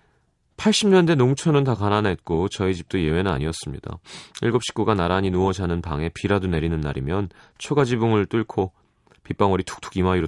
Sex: male